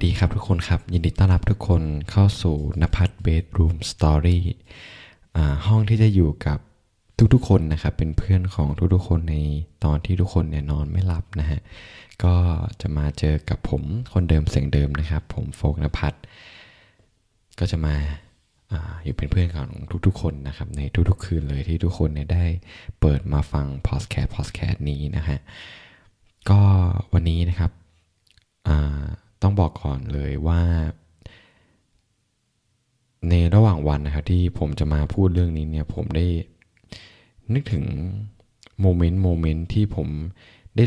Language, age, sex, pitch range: Thai, 20-39, male, 75-105 Hz